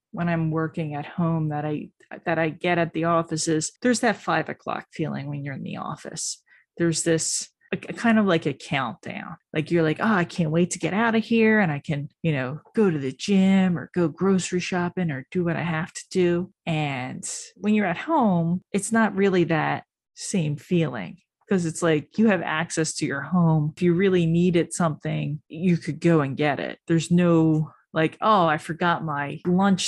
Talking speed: 205 wpm